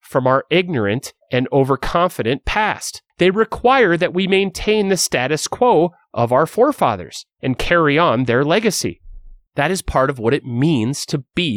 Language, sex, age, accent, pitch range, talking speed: English, male, 30-49, American, 125-190 Hz, 160 wpm